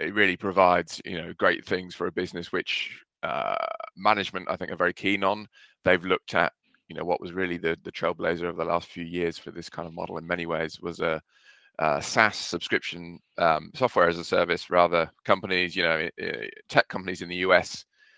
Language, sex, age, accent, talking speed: English, male, 20-39, British, 210 wpm